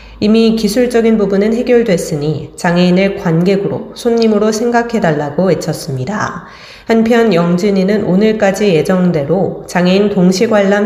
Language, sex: Korean, female